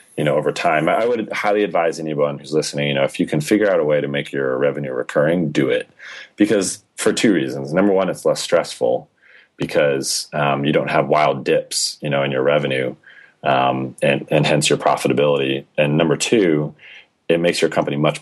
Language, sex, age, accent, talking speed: English, male, 30-49, American, 205 wpm